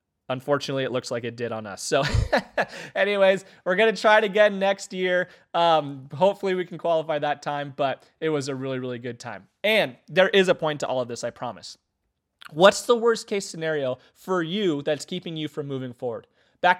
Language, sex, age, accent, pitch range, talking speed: English, male, 30-49, American, 145-190 Hz, 205 wpm